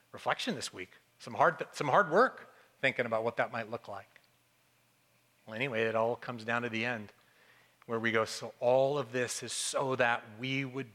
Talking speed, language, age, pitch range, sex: 190 wpm, English, 40-59, 130-200 Hz, male